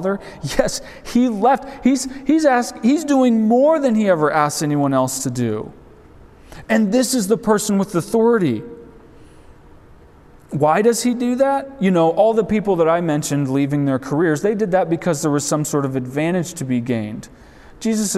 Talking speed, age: 170 wpm, 40-59